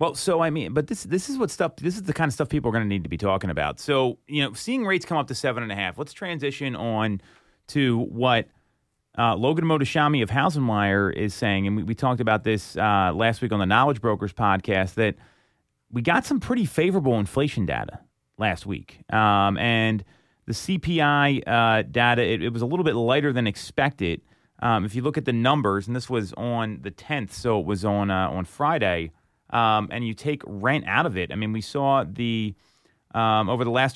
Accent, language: American, English